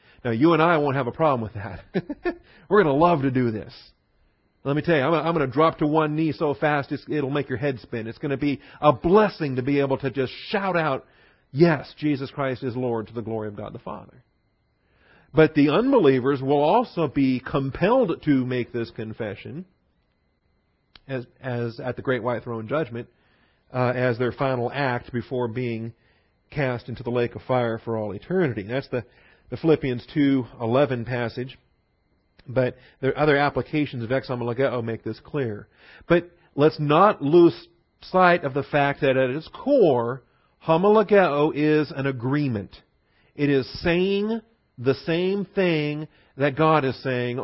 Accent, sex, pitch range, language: American, male, 120-150 Hz, English